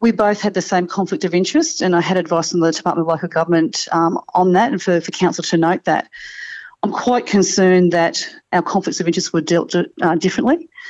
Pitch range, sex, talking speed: 170-205 Hz, female, 225 wpm